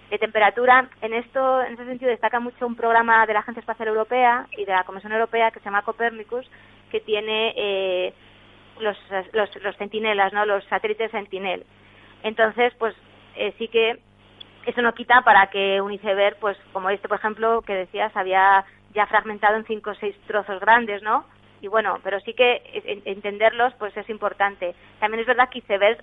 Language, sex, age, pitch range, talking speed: Spanish, female, 20-39, 195-230 Hz, 180 wpm